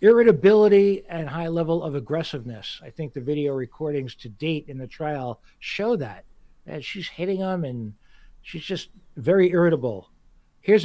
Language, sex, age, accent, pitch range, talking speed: English, male, 60-79, American, 145-185 Hz, 155 wpm